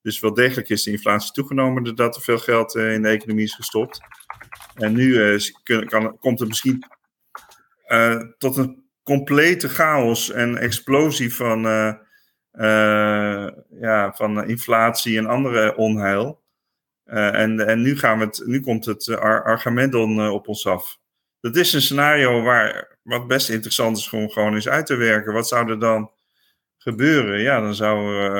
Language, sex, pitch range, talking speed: Dutch, male, 105-125 Hz, 170 wpm